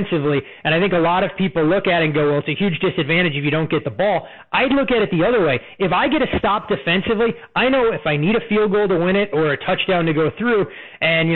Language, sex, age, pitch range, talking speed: English, male, 30-49, 155-190 Hz, 295 wpm